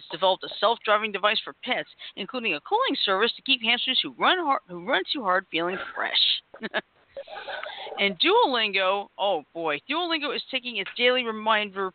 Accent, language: American, English